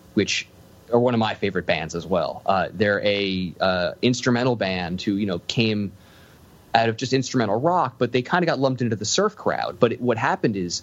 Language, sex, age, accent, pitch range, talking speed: English, male, 30-49, American, 95-120 Hz, 215 wpm